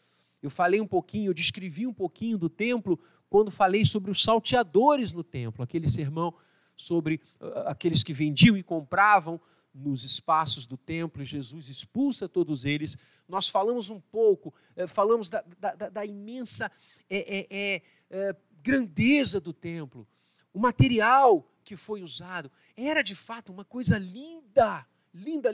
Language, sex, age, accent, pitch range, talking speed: Portuguese, male, 50-69, Brazilian, 160-250 Hz, 135 wpm